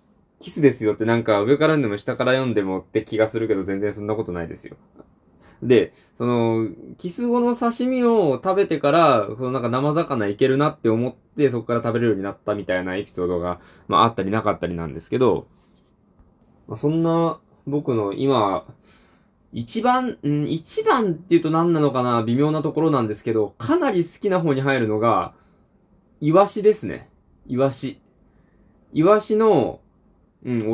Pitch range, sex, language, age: 110-180 Hz, male, Japanese, 20-39